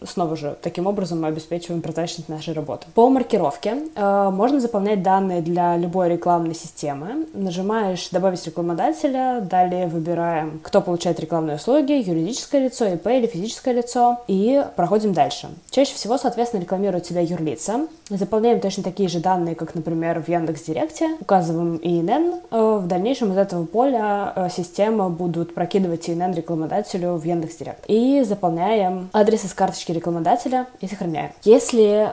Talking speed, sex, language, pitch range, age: 140 wpm, female, Russian, 170-215 Hz, 20-39